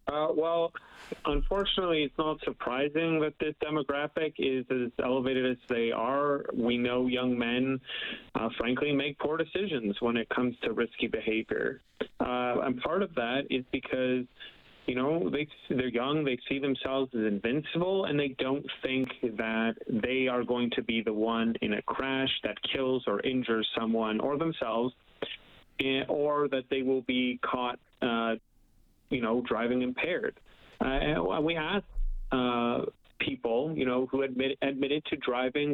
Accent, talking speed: American, 155 wpm